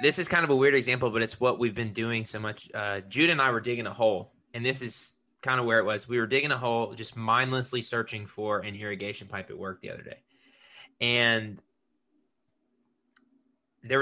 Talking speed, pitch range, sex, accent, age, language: 215 wpm, 110-130 Hz, male, American, 20-39, English